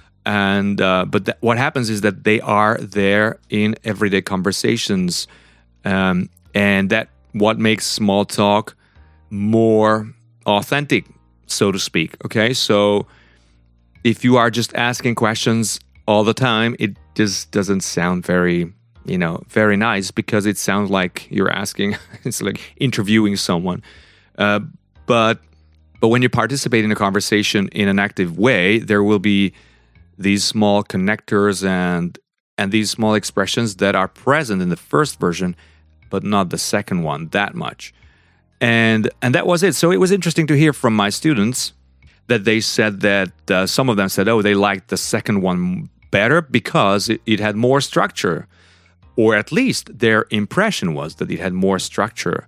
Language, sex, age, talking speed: English, male, 30-49, 160 wpm